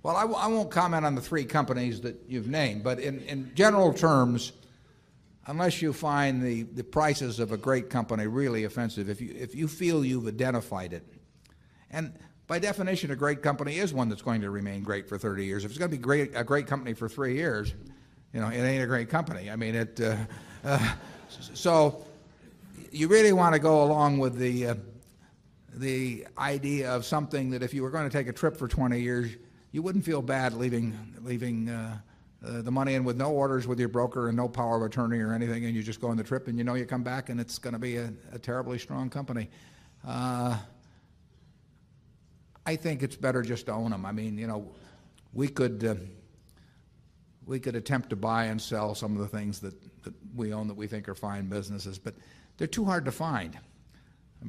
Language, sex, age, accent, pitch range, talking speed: English, male, 50-69, American, 115-140 Hz, 215 wpm